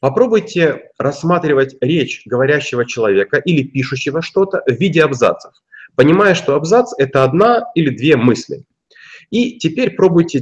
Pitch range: 135-190 Hz